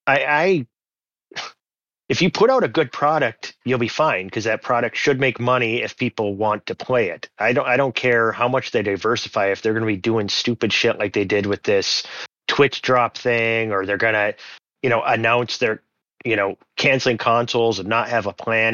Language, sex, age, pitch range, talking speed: English, male, 30-49, 100-115 Hz, 210 wpm